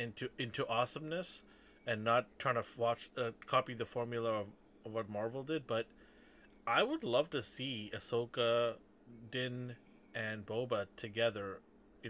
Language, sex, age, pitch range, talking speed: English, male, 30-49, 100-120 Hz, 145 wpm